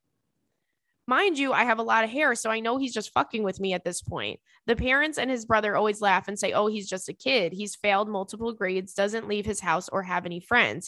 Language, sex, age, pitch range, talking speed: English, female, 20-39, 190-225 Hz, 250 wpm